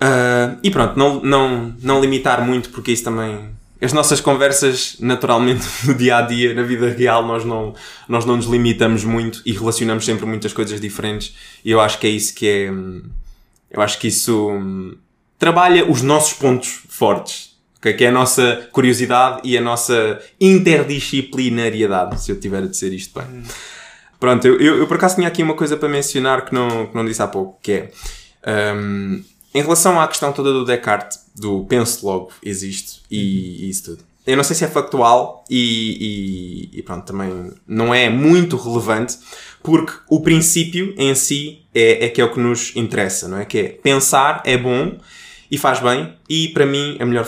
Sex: male